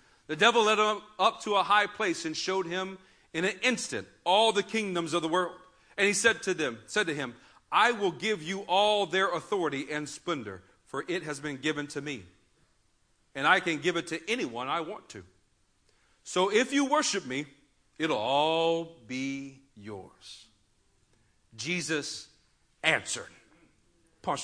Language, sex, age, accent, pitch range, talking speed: English, male, 40-59, American, 140-195 Hz, 165 wpm